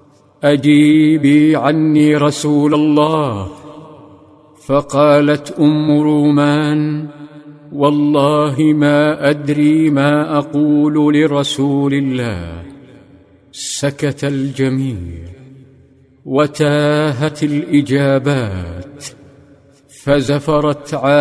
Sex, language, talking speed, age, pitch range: male, Arabic, 55 wpm, 50-69, 140-150 Hz